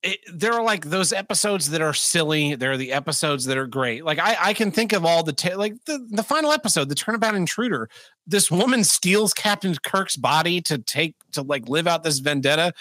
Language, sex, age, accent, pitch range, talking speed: English, male, 30-49, American, 135-200 Hz, 210 wpm